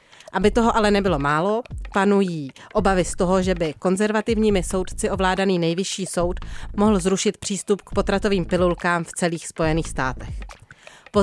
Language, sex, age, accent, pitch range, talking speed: Czech, female, 30-49, native, 170-205 Hz, 145 wpm